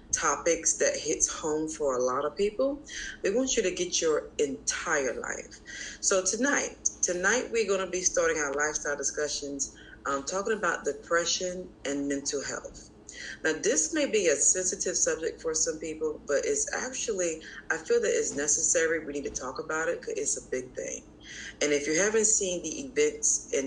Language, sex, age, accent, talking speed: English, female, 30-49, American, 185 wpm